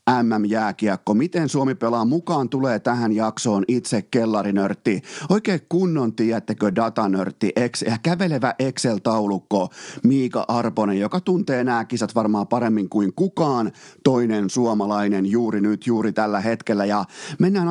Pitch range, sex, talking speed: 110-140 Hz, male, 120 wpm